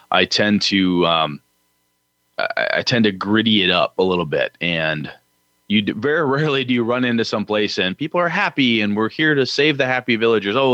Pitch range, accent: 90-115 Hz, American